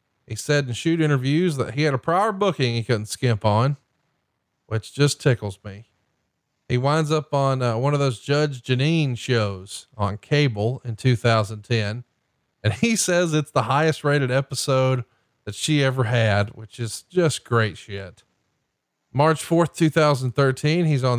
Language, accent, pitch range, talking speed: English, American, 115-145 Hz, 155 wpm